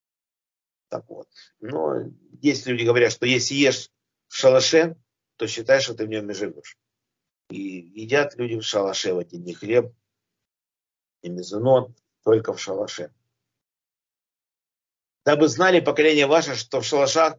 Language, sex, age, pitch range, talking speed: Russian, male, 50-69, 115-155 Hz, 140 wpm